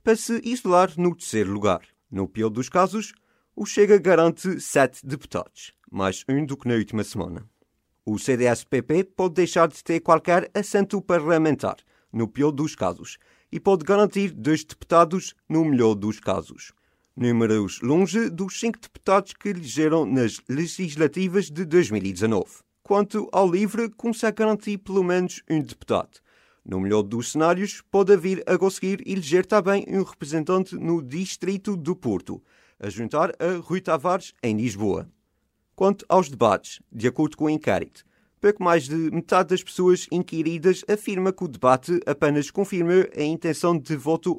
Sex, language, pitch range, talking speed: male, Portuguese, 145-195 Hz, 150 wpm